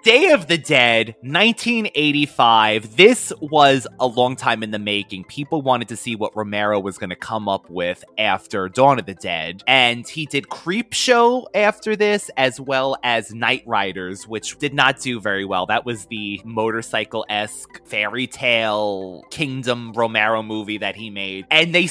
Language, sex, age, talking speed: English, male, 20-39, 165 wpm